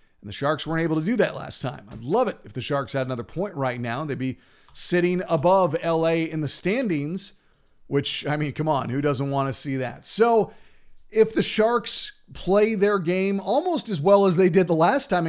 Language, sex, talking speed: English, male, 220 wpm